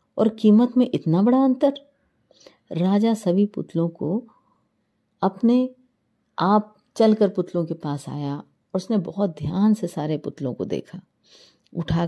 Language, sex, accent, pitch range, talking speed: Hindi, female, native, 140-205 Hz, 135 wpm